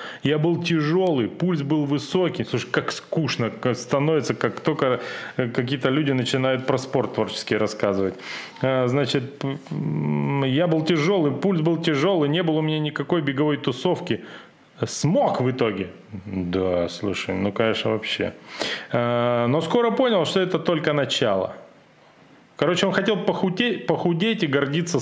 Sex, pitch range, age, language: male, 120-165 Hz, 30-49, Russian